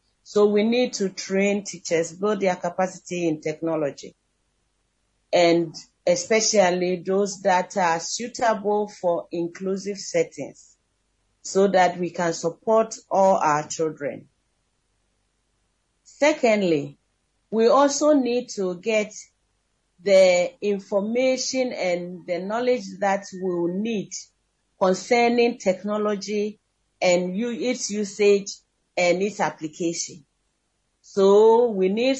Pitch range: 175-225 Hz